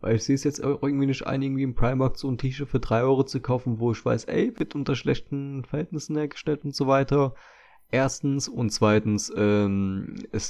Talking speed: 205 wpm